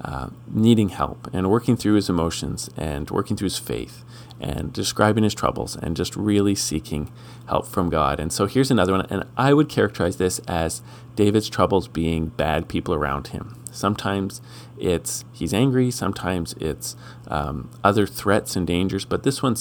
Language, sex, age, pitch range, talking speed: English, male, 40-59, 90-120 Hz, 170 wpm